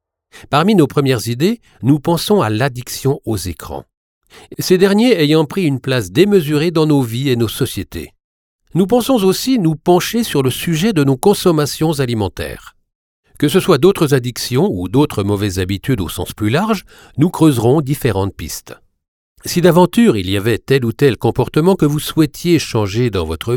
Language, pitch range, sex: French, 105-160 Hz, male